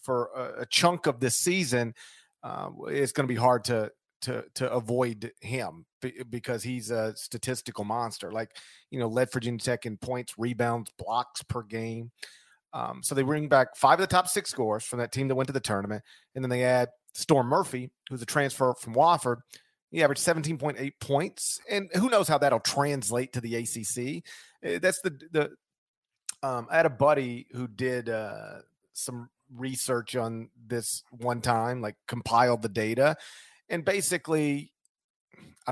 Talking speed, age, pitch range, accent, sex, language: 175 wpm, 40-59, 120-155 Hz, American, male, English